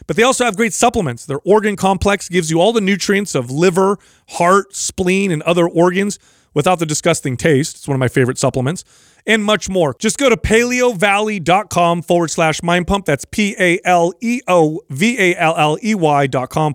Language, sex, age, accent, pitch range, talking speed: English, male, 30-49, American, 155-205 Hz, 155 wpm